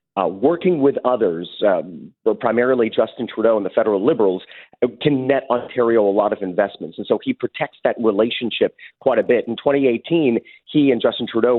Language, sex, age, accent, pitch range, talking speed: English, male, 40-59, American, 115-155 Hz, 180 wpm